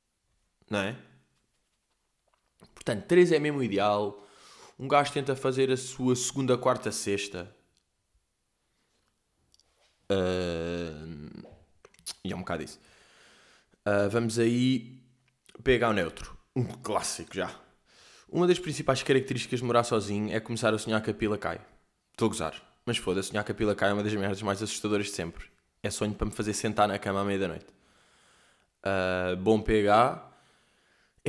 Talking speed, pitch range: 145 wpm, 100-130 Hz